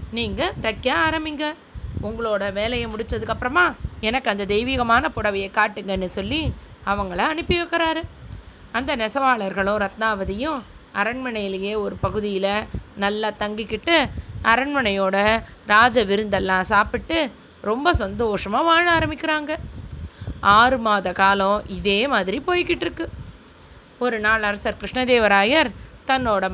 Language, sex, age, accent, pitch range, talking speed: Tamil, female, 20-39, native, 200-275 Hz, 95 wpm